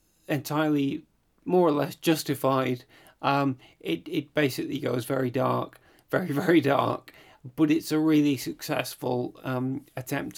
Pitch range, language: 130-150 Hz, English